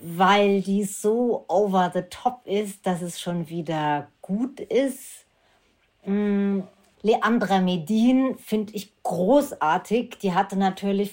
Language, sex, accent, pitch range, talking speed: German, female, German, 155-200 Hz, 115 wpm